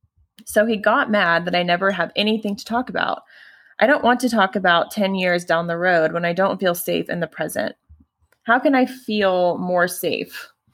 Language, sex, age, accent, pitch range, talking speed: English, female, 20-39, American, 160-205 Hz, 205 wpm